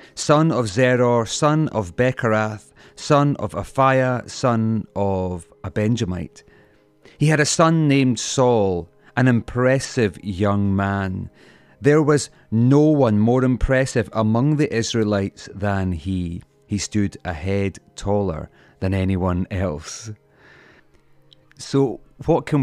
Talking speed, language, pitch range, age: 120 wpm, English, 100-135 Hz, 30-49